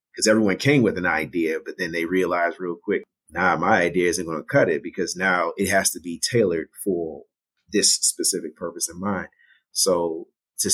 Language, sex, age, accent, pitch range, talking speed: English, male, 30-49, American, 90-130 Hz, 195 wpm